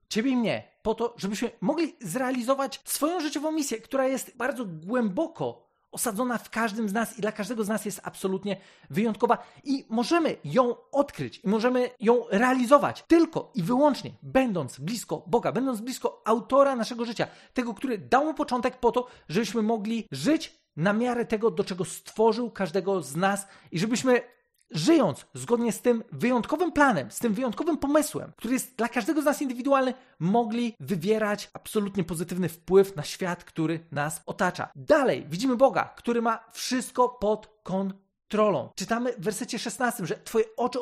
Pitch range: 195-255 Hz